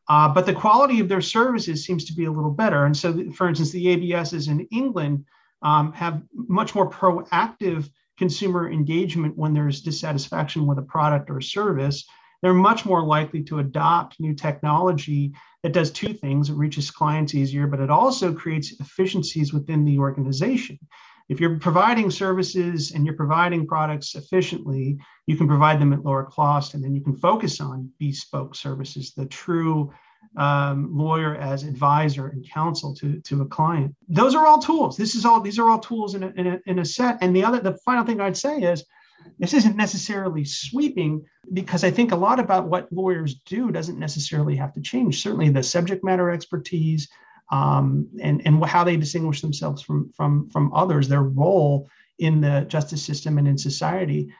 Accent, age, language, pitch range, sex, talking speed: American, 40-59, English, 145-180 Hz, male, 180 wpm